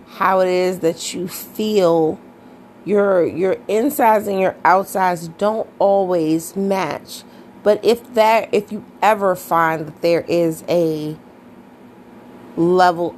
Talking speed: 125 wpm